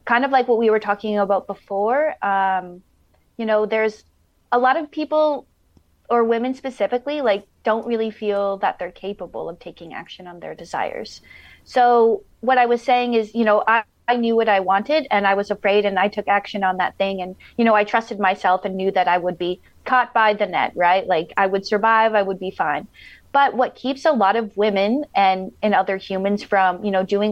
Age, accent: 30-49, American